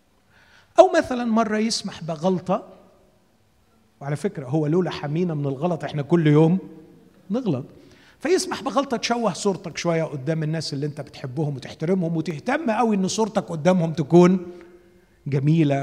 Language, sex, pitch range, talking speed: Arabic, male, 135-195 Hz, 130 wpm